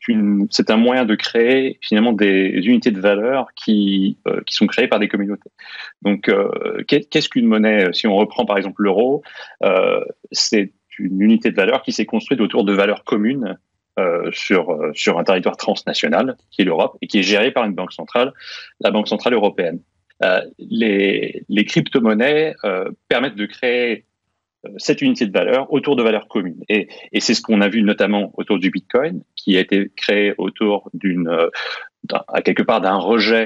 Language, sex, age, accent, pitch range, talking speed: French, male, 30-49, French, 100-135 Hz, 180 wpm